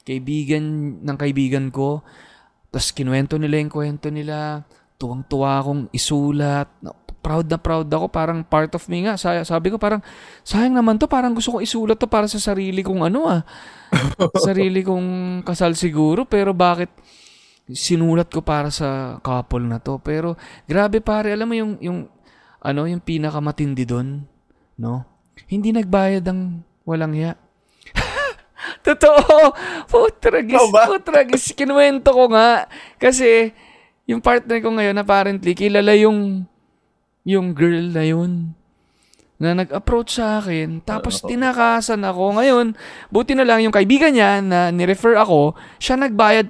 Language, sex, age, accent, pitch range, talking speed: Filipino, male, 20-39, native, 155-220 Hz, 135 wpm